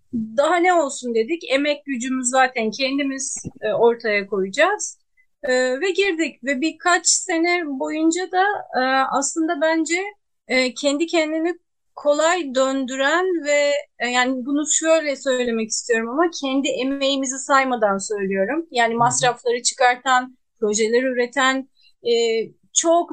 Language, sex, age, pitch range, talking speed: Turkish, female, 30-49, 245-310 Hz, 105 wpm